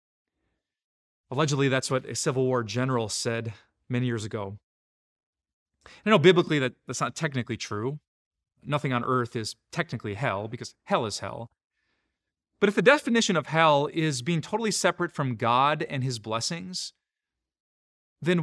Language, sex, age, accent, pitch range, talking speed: English, male, 30-49, American, 120-160 Hz, 145 wpm